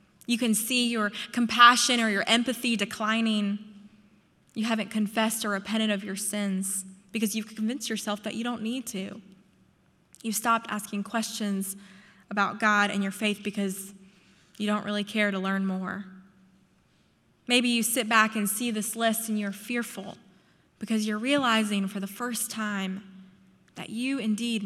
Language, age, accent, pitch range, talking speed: English, 20-39, American, 200-240 Hz, 155 wpm